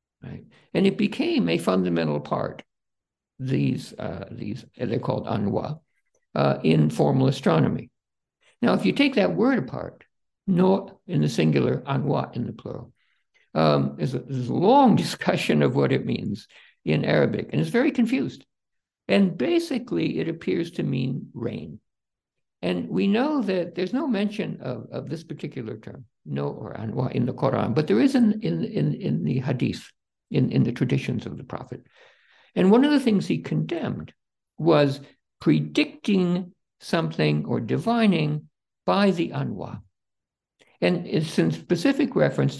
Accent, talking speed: American, 155 wpm